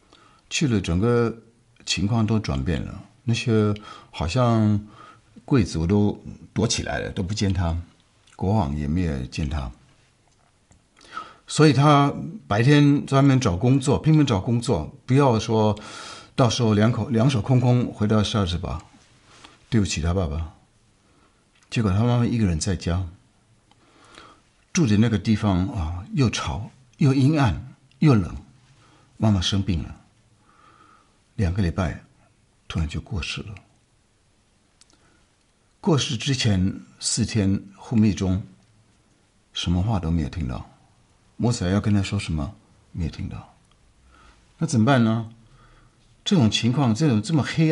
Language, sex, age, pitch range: Chinese, male, 60-79, 95-120 Hz